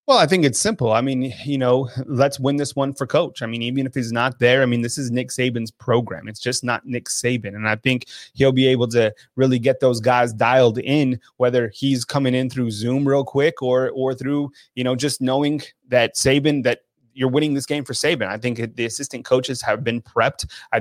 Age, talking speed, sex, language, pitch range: 30-49, 230 wpm, male, English, 120-135 Hz